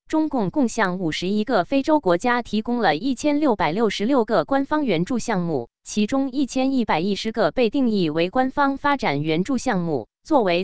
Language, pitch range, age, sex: Chinese, 170-270 Hz, 20-39, female